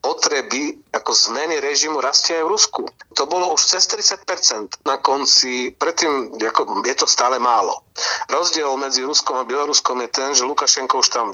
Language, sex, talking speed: Slovak, male, 170 wpm